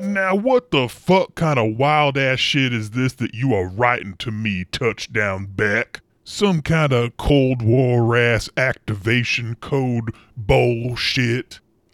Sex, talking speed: female, 135 wpm